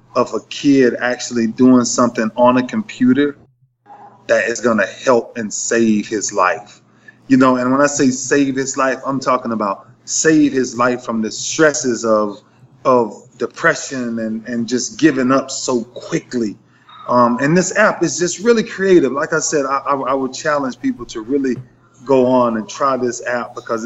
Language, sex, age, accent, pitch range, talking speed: English, male, 20-39, American, 120-155 Hz, 180 wpm